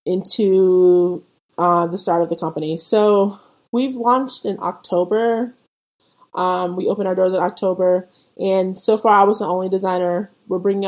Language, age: English, 20-39